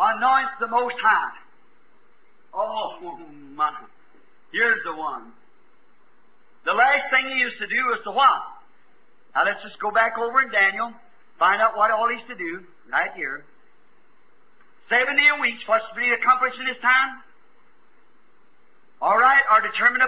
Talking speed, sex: 150 wpm, male